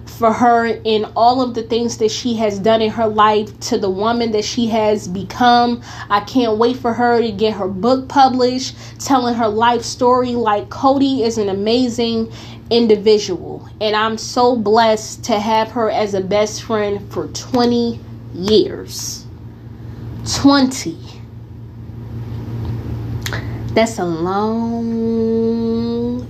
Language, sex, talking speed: English, female, 135 wpm